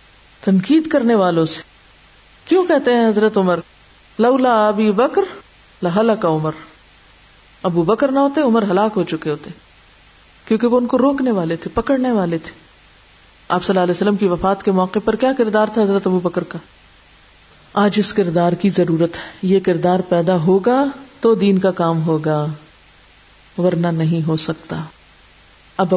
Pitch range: 180-245 Hz